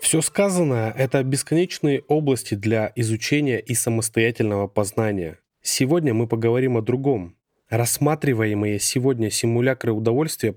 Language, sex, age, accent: Russian, male, 20-39, native